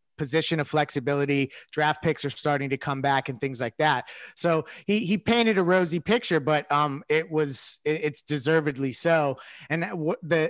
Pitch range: 145-180 Hz